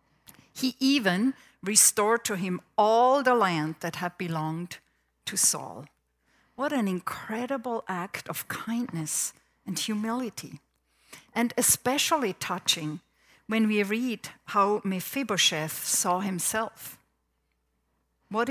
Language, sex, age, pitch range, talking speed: English, female, 50-69, 145-210 Hz, 105 wpm